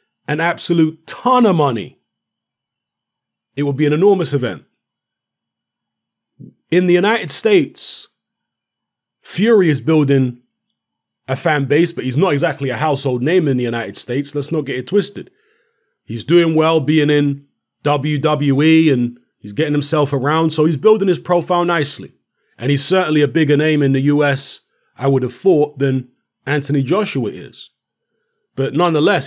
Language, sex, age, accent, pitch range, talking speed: English, male, 30-49, British, 130-165 Hz, 150 wpm